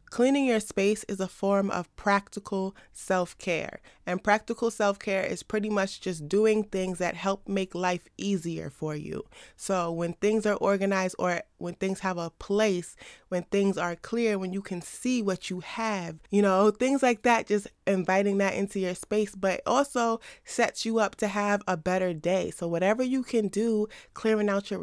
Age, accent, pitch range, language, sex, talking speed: 20-39, American, 180-215 Hz, English, female, 185 wpm